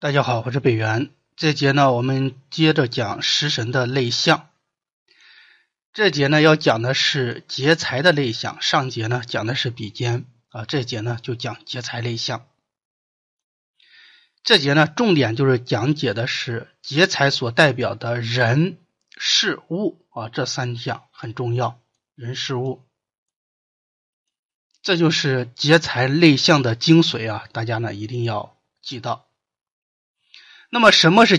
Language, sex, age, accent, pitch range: Chinese, male, 30-49, native, 120-155 Hz